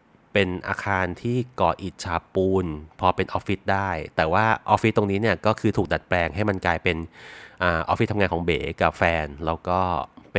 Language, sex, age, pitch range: Thai, male, 30-49, 90-110 Hz